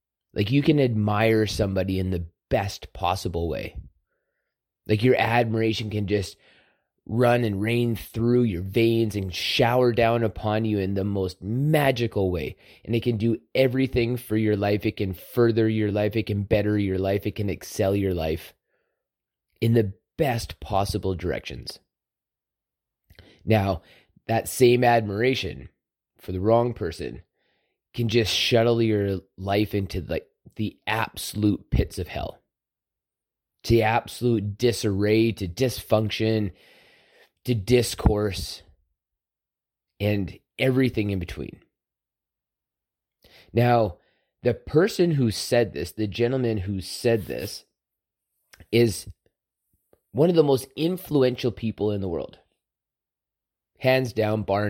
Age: 30-49